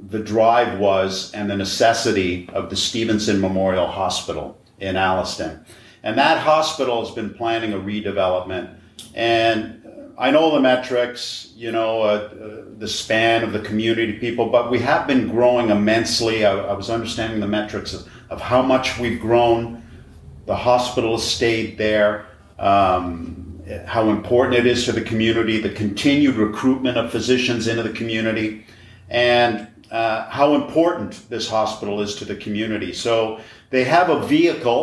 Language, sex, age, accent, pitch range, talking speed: English, male, 50-69, American, 105-120 Hz, 155 wpm